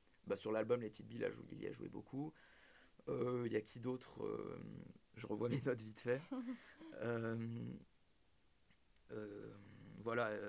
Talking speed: 150 wpm